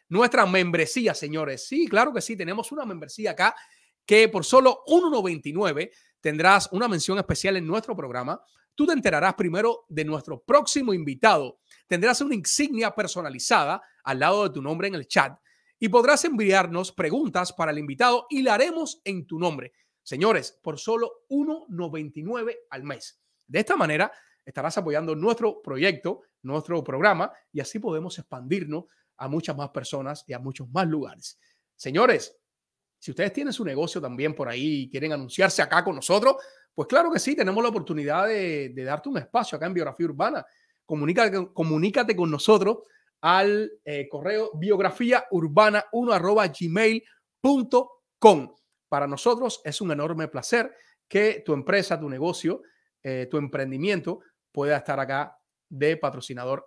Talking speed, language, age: 150 wpm, Spanish, 30-49